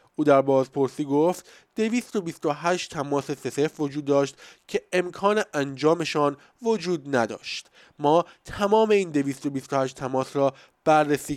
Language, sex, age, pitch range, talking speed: Persian, male, 20-39, 140-180 Hz, 115 wpm